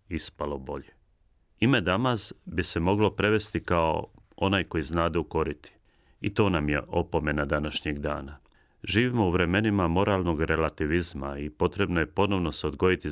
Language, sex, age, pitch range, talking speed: Croatian, male, 40-59, 80-100 Hz, 145 wpm